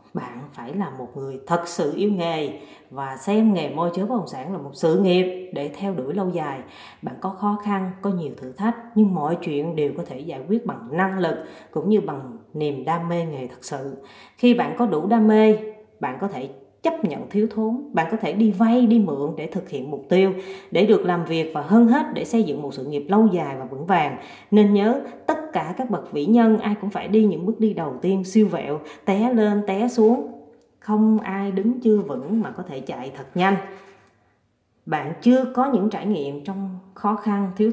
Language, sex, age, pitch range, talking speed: Vietnamese, female, 20-39, 165-220 Hz, 225 wpm